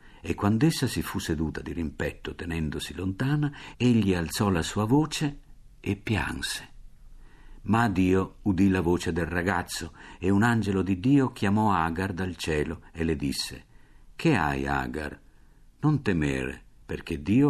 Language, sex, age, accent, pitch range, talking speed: Italian, male, 50-69, native, 80-110 Hz, 145 wpm